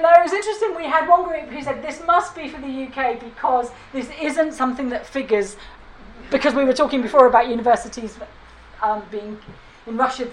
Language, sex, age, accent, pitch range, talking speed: English, female, 40-59, British, 230-310 Hz, 185 wpm